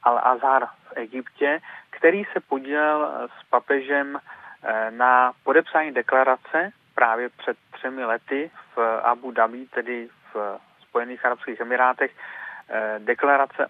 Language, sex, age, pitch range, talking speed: Czech, male, 30-49, 125-145 Hz, 105 wpm